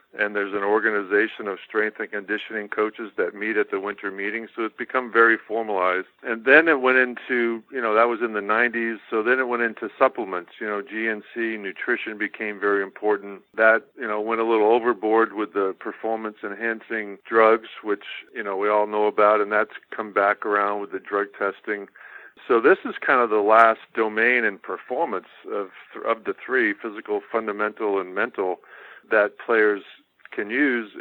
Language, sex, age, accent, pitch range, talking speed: English, male, 50-69, American, 105-115 Hz, 185 wpm